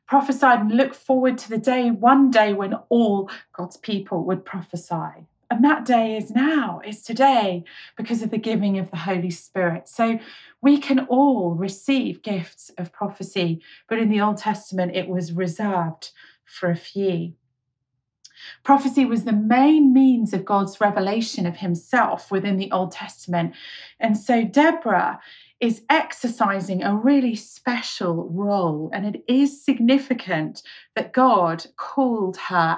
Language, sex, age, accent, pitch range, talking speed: English, female, 30-49, British, 180-245 Hz, 145 wpm